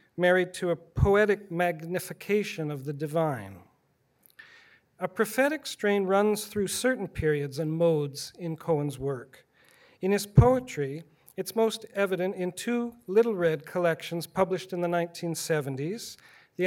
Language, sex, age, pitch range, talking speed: English, male, 40-59, 155-195 Hz, 130 wpm